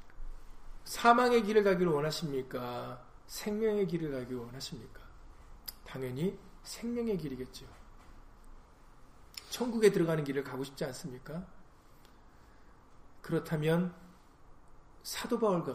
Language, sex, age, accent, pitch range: Korean, male, 40-59, native, 130-185 Hz